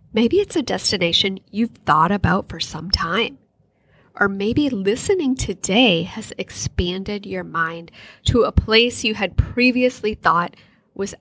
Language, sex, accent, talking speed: English, female, American, 140 wpm